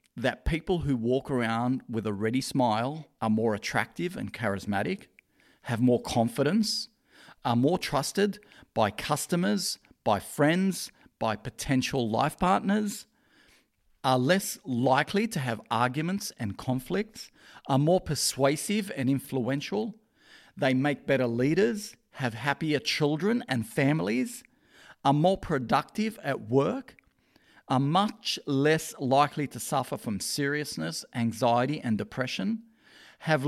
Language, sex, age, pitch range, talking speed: English, male, 40-59, 120-175 Hz, 120 wpm